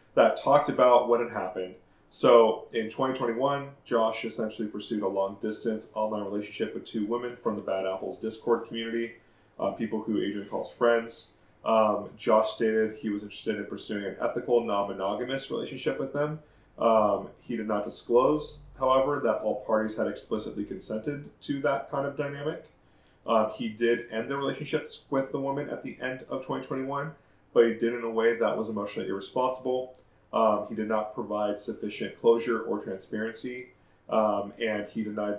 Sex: male